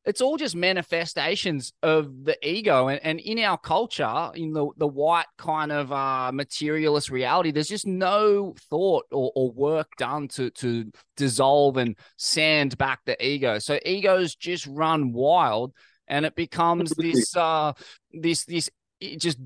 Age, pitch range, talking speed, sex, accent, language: 20-39, 130-160 Hz, 155 wpm, male, Australian, English